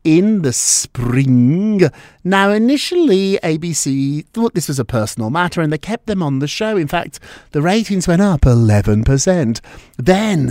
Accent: British